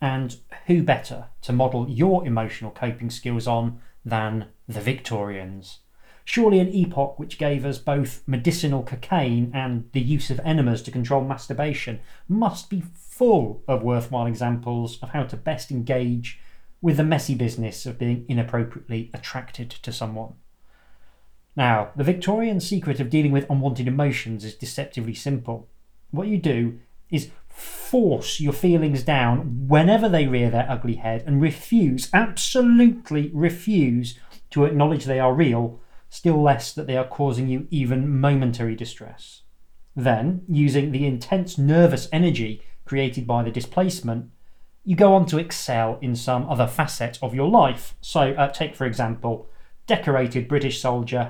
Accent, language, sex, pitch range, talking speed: British, English, male, 120-155 Hz, 145 wpm